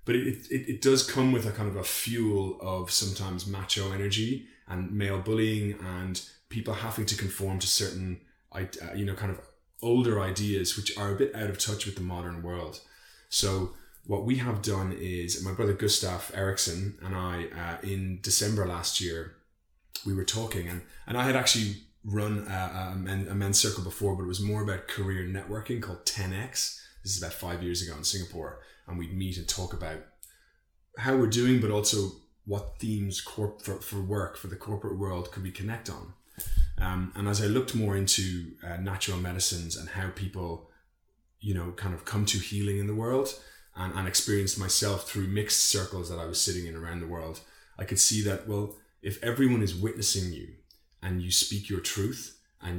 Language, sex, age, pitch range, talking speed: English, male, 20-39, 90-105 Hz, 195 wpm